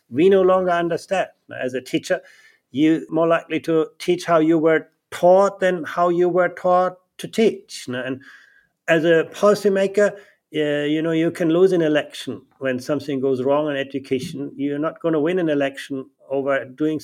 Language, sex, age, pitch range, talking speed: English, male, 50-69, 135-175 Hz, 175 wpm